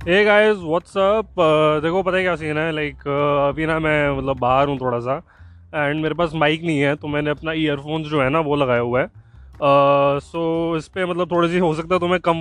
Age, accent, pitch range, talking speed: 20-39, native, 145-185 Hz, 230 wpm